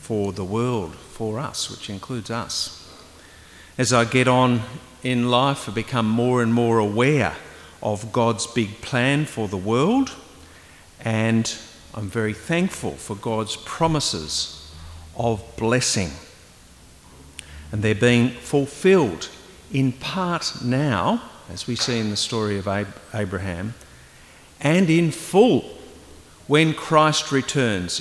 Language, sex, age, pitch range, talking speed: English, male, 50-69, 105-140 Hz, 120 wpm